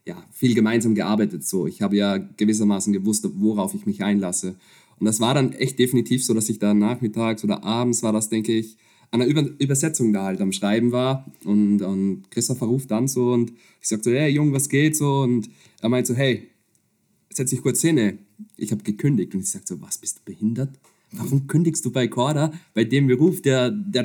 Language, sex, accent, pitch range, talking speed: German, male, German, 105-130 Hz, 210 wpm